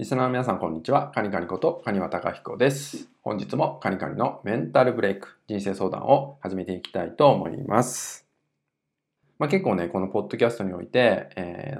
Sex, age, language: male, 20-39, Japanese